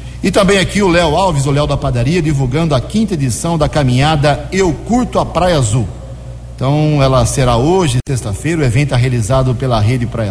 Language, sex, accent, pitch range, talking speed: Portuguese, male, Brazilian, 125-150 Hz, 190 wpm